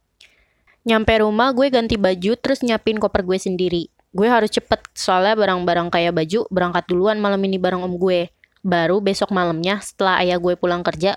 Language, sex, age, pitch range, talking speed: Indonesian, female, 20-39, 185-235 Hz, 170 wpm